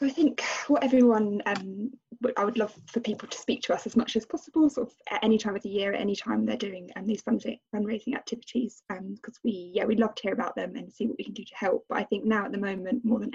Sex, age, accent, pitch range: female, 10-29, British, 215-245 Hz